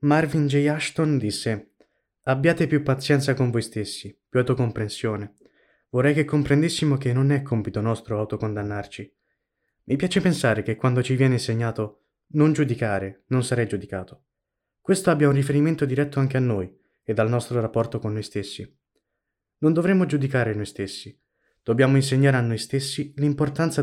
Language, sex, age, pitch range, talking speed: Italian, male, 20-39, 105-140 Hz, 150 wpm